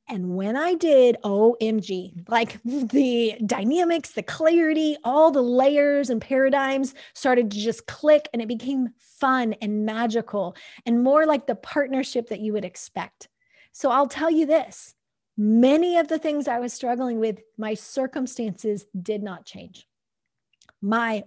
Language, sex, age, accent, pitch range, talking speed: English, female, 30-49, American, 220-270 Hz, 150 wpm